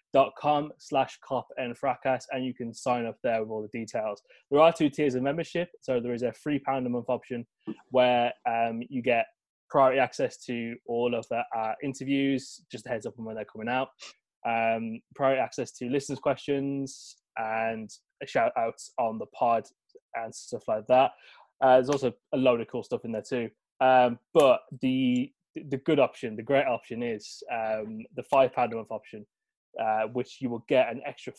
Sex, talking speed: male, 200 wpm